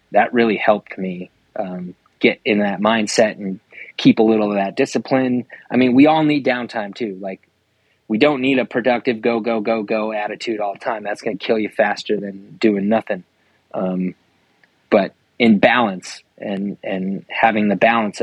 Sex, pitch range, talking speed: male, 105-130 Hz, 180 wpm